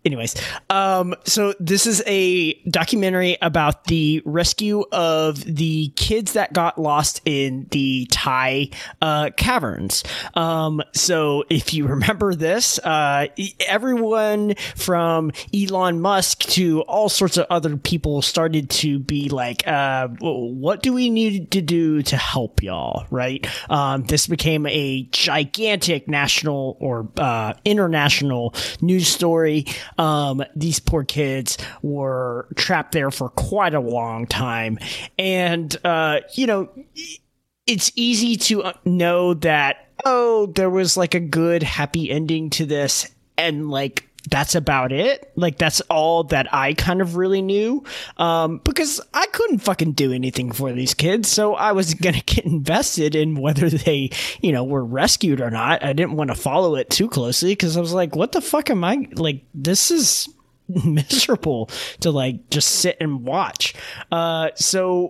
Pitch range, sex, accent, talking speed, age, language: 140-185 Hz, male, American, 150 wpm, 20-39, English